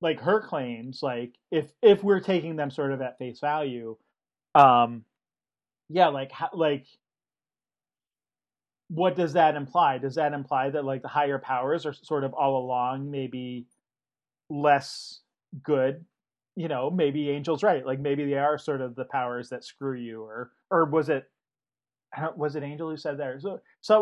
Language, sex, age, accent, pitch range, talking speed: English, male, 30-49, American, 130-160 Hz, 165 wpm